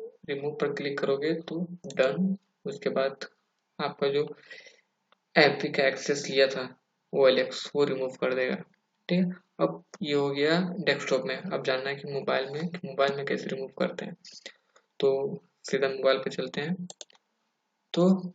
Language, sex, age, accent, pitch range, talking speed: Hindi, male, 20-39, native, 135-185 Hz, 160 wpm